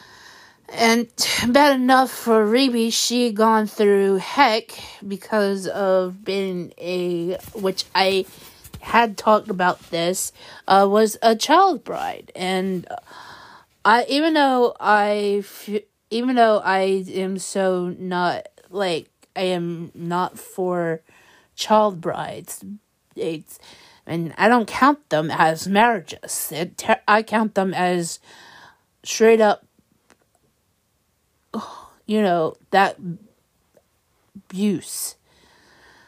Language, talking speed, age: English, 100 wpm, 30-49